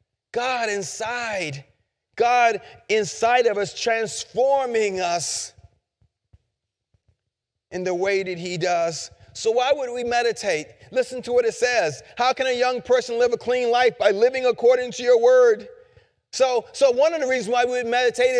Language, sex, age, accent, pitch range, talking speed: English, male, 40-59, American, 215-290 Hz, 155 wpm